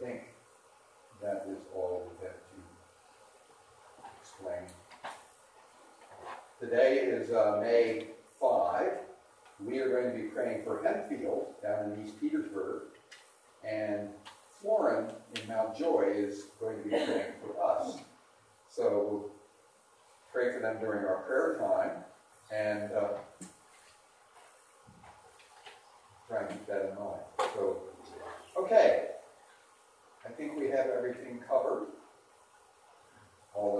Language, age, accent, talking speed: English, 40-59, American, 110 wpm